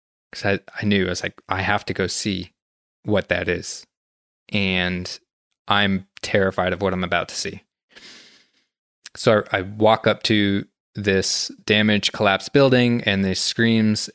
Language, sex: English, male